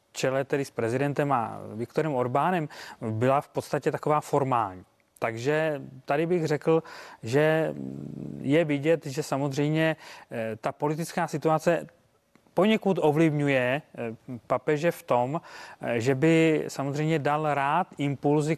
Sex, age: male, 30-49